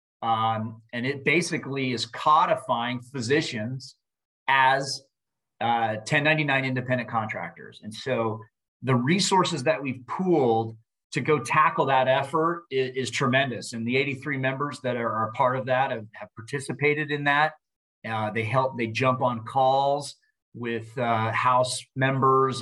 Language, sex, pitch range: English, male, 115-140 Hz